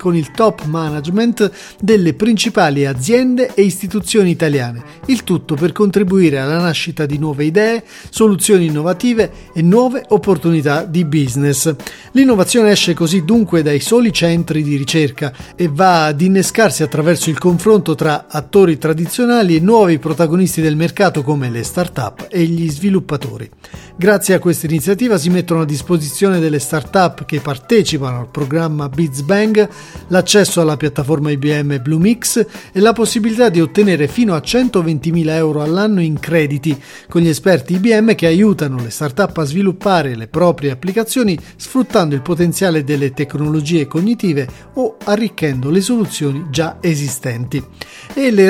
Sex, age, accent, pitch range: male, 40-59, native, 150-205 Hz